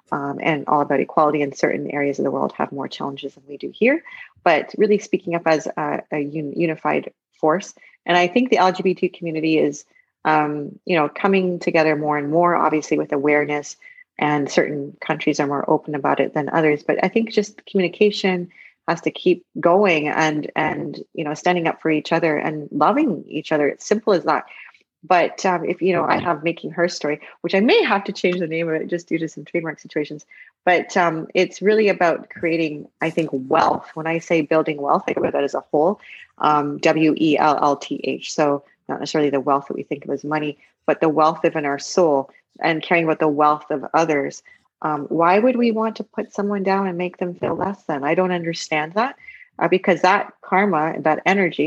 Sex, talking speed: female, 210 wpm